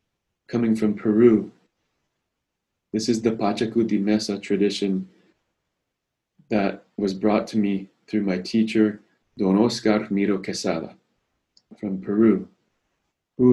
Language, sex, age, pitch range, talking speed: English, male, 20-39, 100-115 Hz, 105 wpm